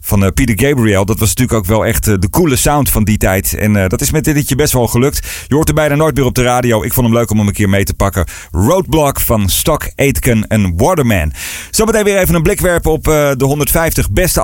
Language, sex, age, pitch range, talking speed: Dutch, male, 40-59, 105-145 Hz, 260 wpm